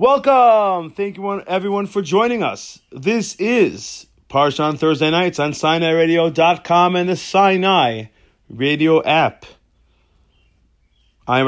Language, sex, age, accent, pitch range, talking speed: English, male, 30-49, American, 100-140 Hz, 115 wpm